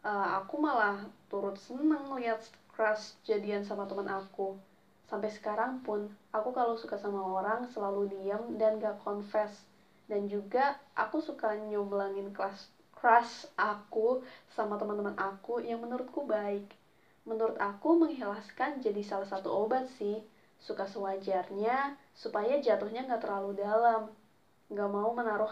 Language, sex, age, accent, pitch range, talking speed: Indonesian, female, 20-39, native, 200-245 Hz, 130 wpm